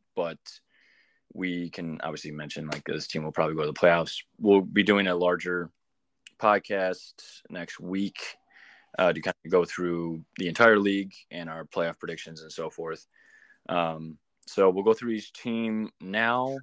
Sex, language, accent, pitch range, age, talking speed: male, English, American, 80-100 Hz, 20-39, 165 wpm